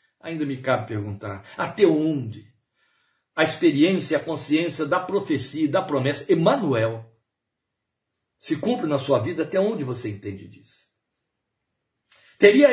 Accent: Brazilian